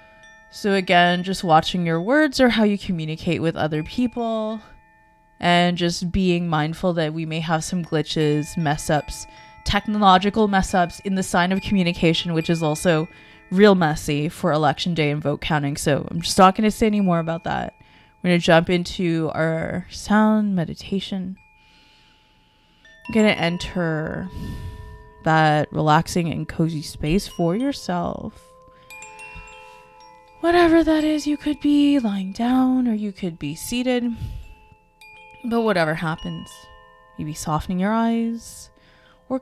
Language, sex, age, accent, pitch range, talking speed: English, female, 20-39, American, 155-210 Hz, 145 wpm